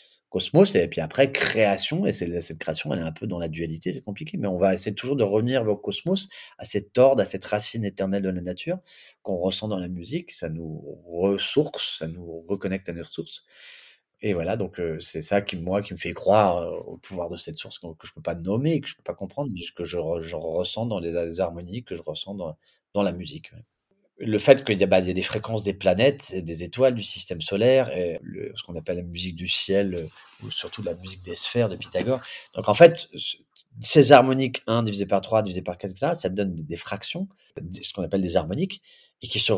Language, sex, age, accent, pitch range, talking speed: French, male, 30-49, French, 95-130 Hz, 240 wpm